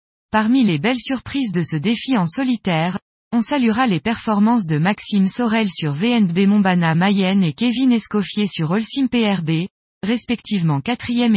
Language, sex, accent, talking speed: French, female, French, 150 wpm